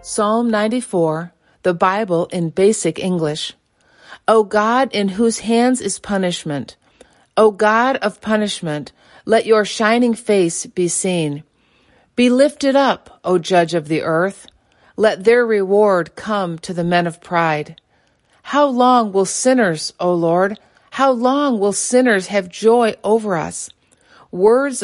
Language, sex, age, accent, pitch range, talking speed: English, female, 40-59, American, 180-230 Hz, 135 wpm